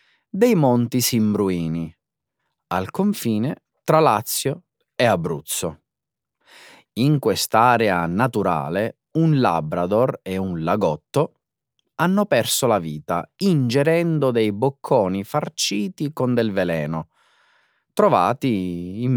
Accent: native